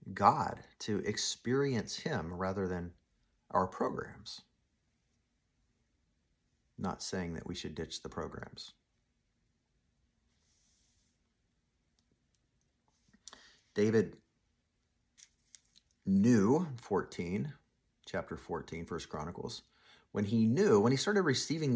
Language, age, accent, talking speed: English, 50-69, American, 85 wpm